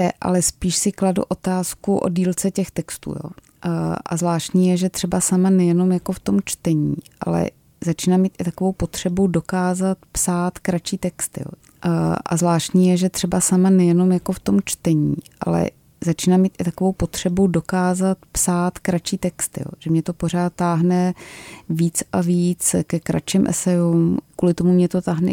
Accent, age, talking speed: native, 30-49, 160 wpm